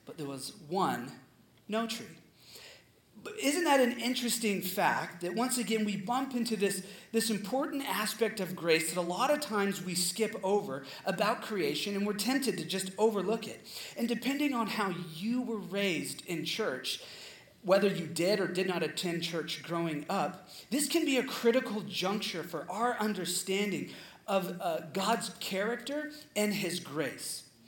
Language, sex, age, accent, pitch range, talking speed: English, male, 40-59, American, 160-230 Hz, 160 wpm